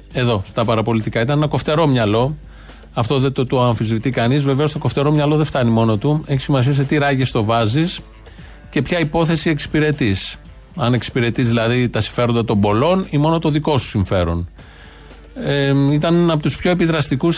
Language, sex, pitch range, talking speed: Greek, male, 120-155 Hz, 175 wpm